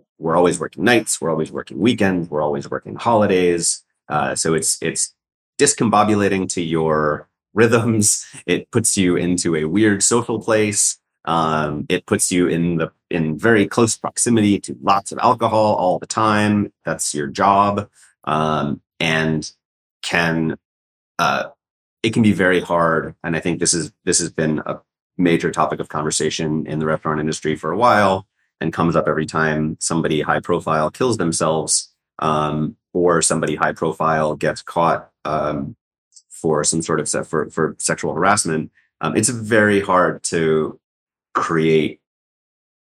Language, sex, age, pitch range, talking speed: English, male, 30-49, 75-100 Hz, 155 wpm